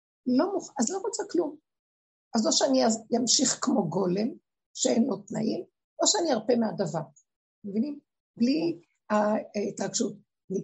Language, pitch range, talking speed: Hebrew, 210-285 Hz, 130 wpm